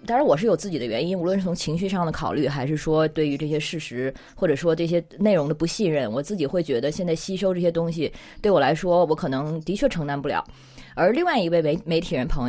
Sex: female